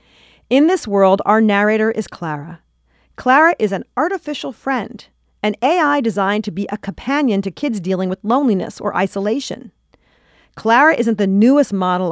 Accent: American